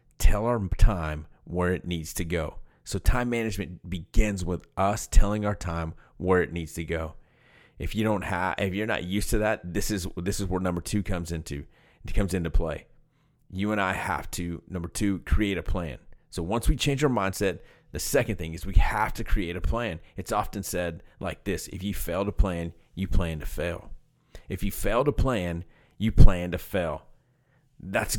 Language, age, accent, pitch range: English, 30-49, American, 85-105 Hz